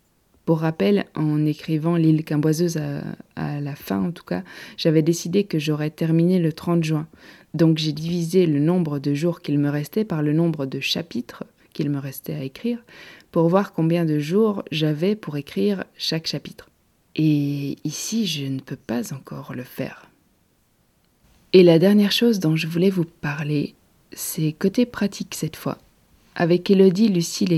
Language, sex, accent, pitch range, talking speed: French, female, French, 155-190 Hz, 170 wpm